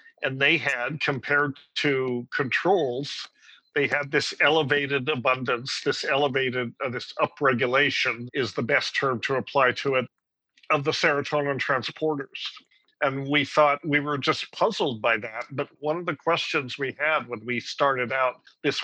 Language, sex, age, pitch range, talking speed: English, male, 50-69, 130-155 Hz, 155 wpm